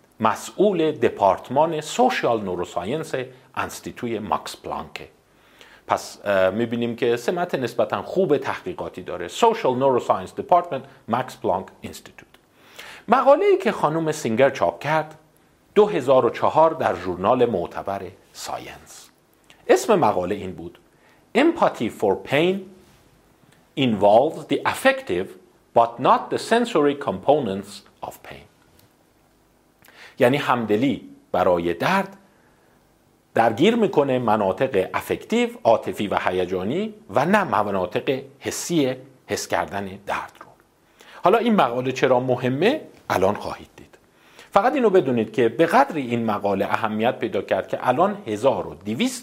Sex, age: male, 50-69